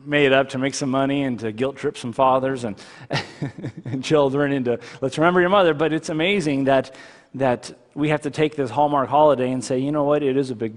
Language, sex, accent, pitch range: English, male, American, 130-170 Hz